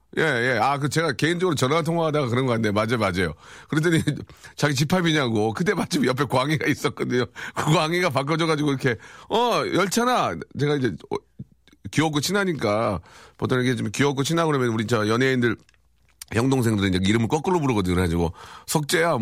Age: 40-59